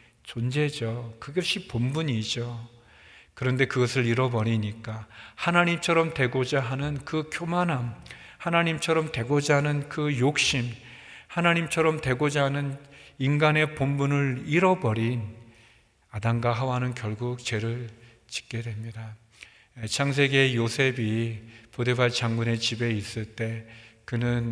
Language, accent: Korean, native